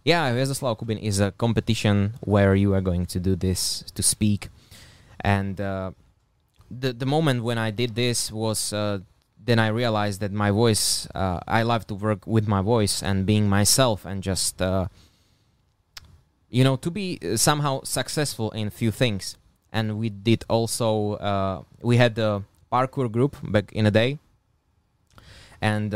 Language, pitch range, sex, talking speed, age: Slovak, 95-115 Hz, male, 165 wpm, 20-39